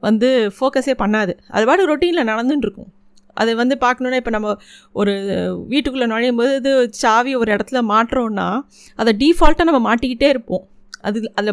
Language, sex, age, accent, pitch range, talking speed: Tamil, female, 30-49, native, 205-255 Hz, 145 wpm